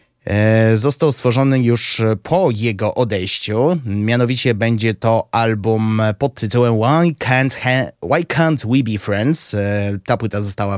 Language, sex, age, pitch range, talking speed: Polish, male, 20-39, 105-140 Hz, 115 wpm